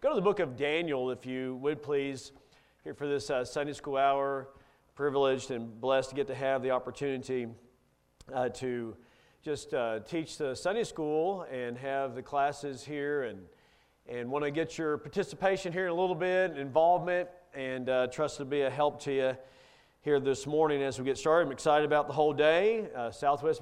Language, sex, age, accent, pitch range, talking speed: English, male, 40-59, American, 125-155 Hz, 195 wpm